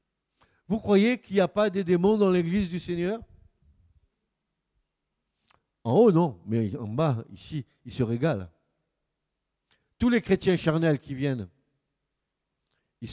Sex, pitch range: male, 125-200 Hz